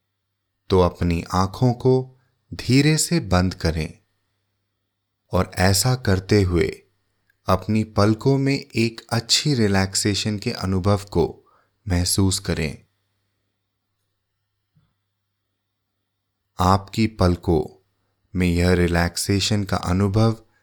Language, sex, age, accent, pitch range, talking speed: English, male, 30-49, Indian, 95-105 Hz, 85 wpm